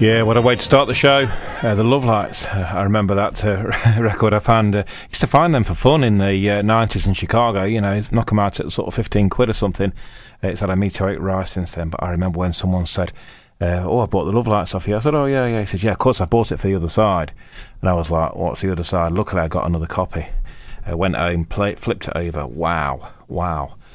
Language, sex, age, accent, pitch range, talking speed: English, male, 30-49, British, 90-115 Hz, 265 wpm